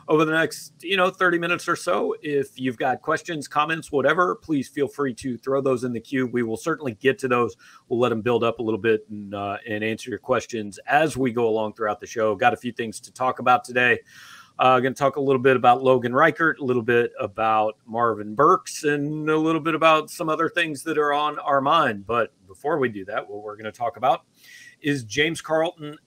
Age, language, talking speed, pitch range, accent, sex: 40-59, English, 235 wpm, 120-150 Hz, American, male